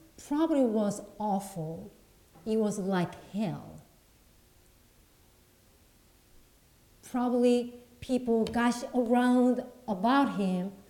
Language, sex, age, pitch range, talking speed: English, female, 40-59, 185-260 Hz, 70 wpm